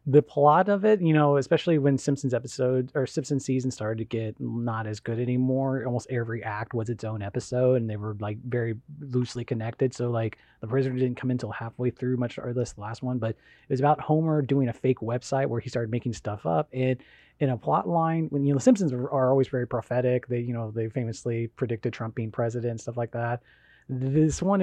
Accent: American